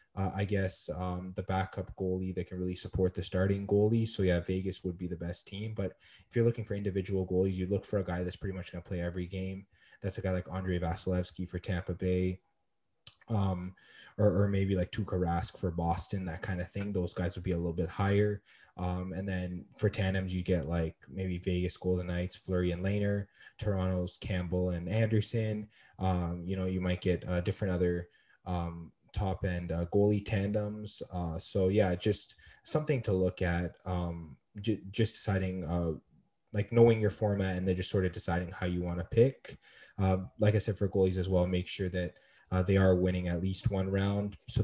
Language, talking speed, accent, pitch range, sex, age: English, 205 wpm, American, 90-100 Hz, male, 20-39